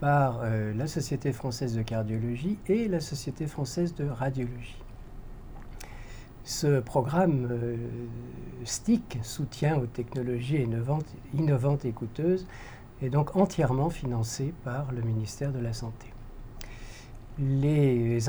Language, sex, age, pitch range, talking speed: French, male, 50-69, 115-140 Hz, 110 wpm